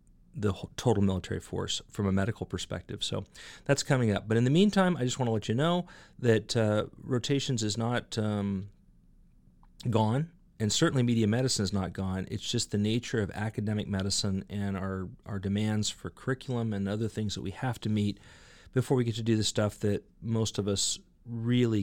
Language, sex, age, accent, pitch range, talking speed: English, male, 40-59, American, 95-115 Hz, 190 wpm